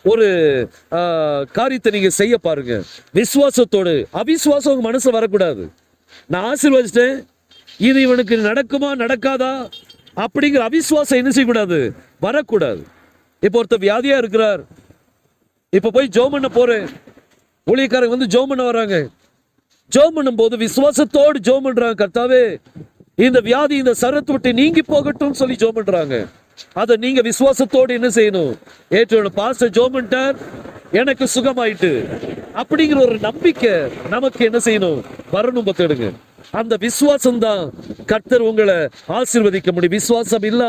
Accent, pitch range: native, 205-265 Hz